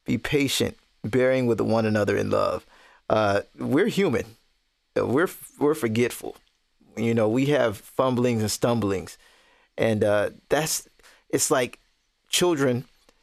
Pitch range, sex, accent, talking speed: 110-135 Hz, male, American, 120 wpm